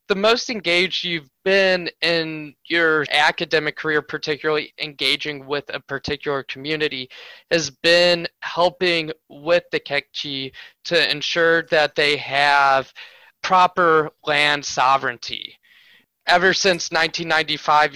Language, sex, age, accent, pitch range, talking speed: English, male, 20-39, American, 135-170 Hz, 105 wpm